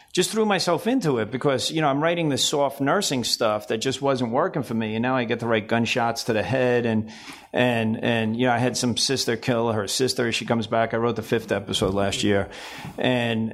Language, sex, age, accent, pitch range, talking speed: English, male, 40-59, American, 110-125 Hz, 235 wpm